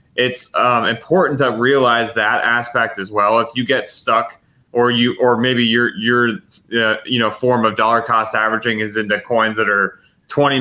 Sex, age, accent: male, 30-49, American